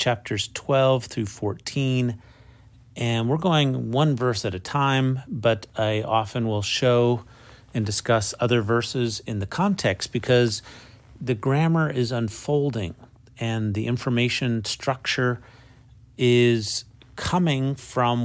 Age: 40-59